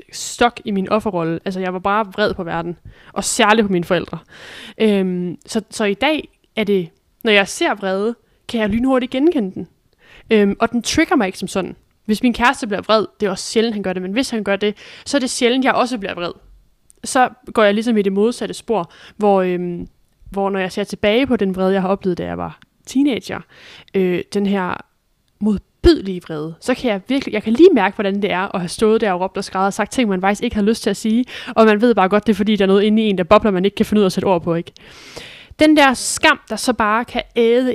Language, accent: Danish, native